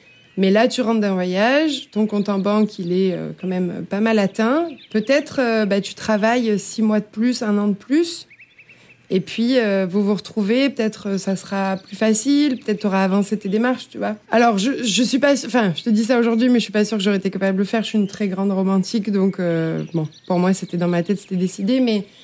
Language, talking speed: French, 240 wpm